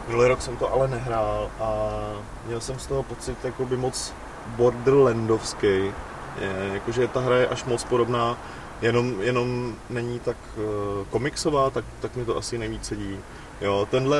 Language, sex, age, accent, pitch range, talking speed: Czech, male, 20-39, native, 110-125 Hz, 150 wpm